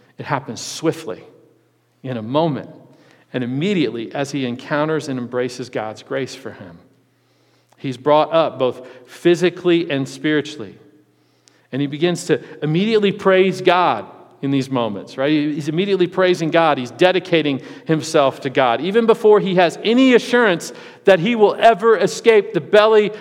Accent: American